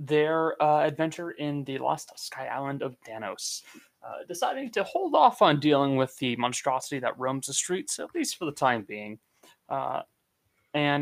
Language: English